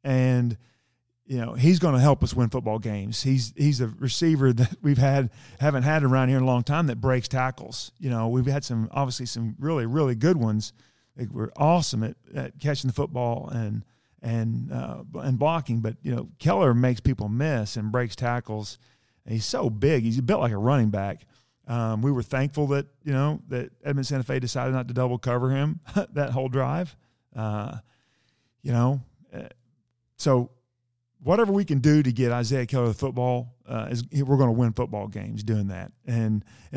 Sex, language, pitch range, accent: male, English, 115-135 Hz, American